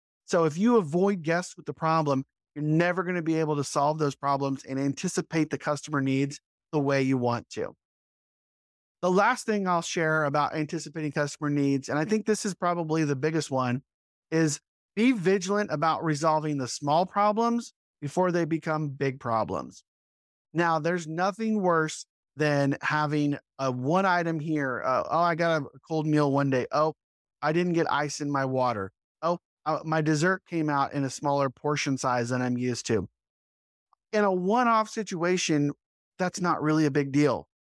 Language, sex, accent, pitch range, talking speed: English, male, American, 135-170 Hz, 175 wpm